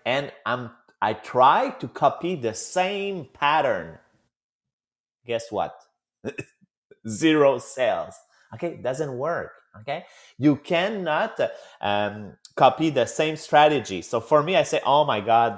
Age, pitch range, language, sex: 30-49, 130-190 Hz, English, male